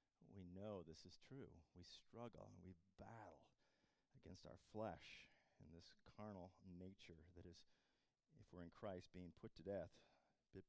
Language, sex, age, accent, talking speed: English, male, 40-59, American, 155 wpm